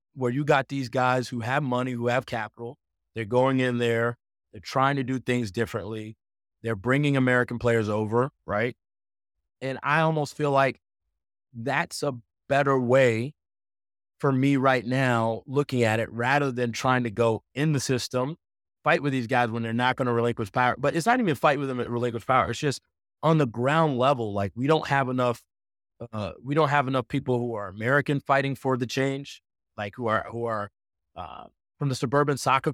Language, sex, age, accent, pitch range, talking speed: English, male, 30-49, American, 115-140 Hz, 190 wpm